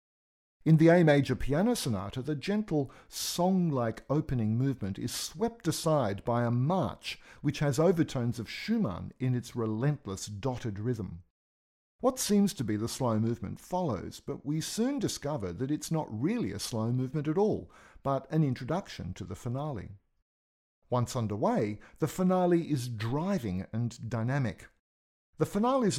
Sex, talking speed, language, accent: male, 150 wpm, English, Australian